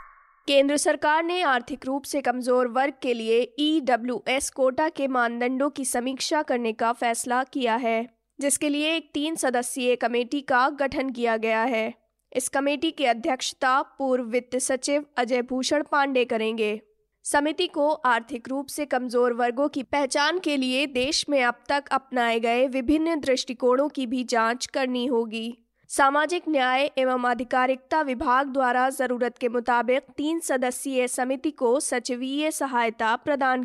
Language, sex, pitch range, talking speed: Hindi, female, 245-290 Hz, 150 wpm